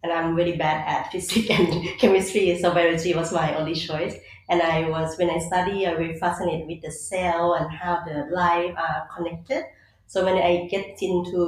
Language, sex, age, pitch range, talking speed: English, female, 30-49, 160-180 Hz, 200 wpm